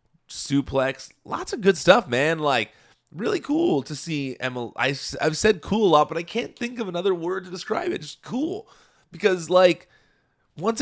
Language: English